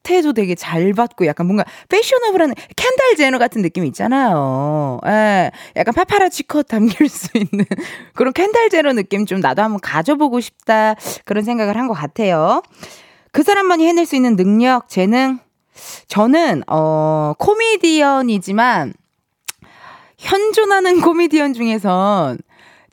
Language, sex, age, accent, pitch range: Korean, female, 20-39, native, 190-305 Hz